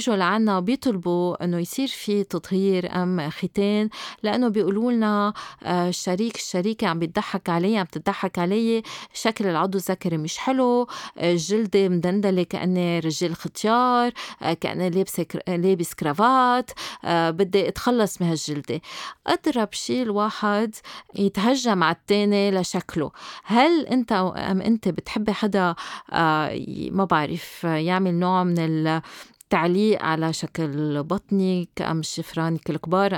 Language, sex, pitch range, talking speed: Arabic, female, 175-215 Hz, 115 wpm